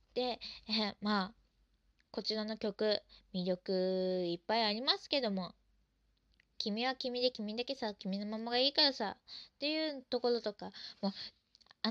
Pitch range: 190-255 Hz